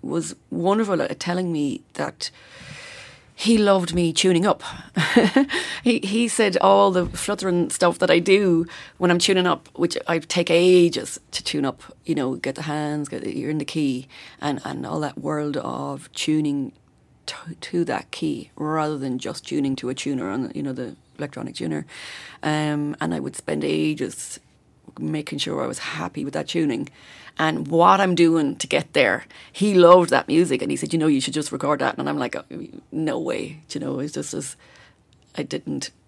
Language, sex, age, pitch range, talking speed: English, female, 30-49, 150-195 Hz, 190 wpm